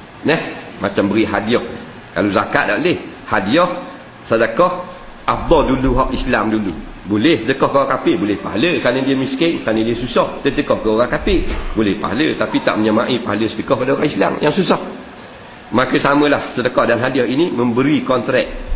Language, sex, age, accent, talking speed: English, male, 50-69, Malaysian, 165 wpm